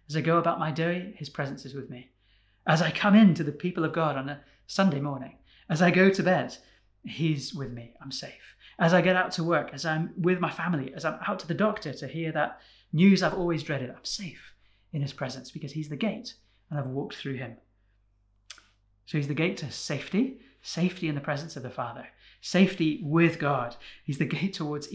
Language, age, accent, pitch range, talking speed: English, 30-49, British, 130-170 Hz, 220 wpm